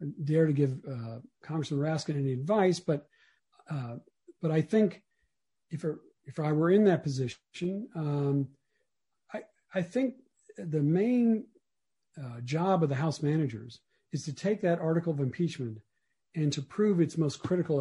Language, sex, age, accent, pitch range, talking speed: English, male, 50-69, American, 135-170 Hz, 155 wpm